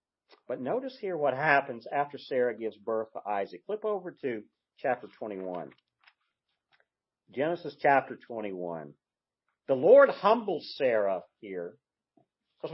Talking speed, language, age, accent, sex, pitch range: 120 wpm, English, 50-69, American, male, 135-205 Hz